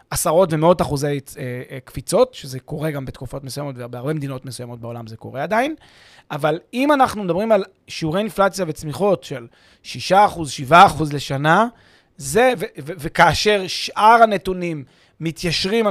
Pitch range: 145-200 Hz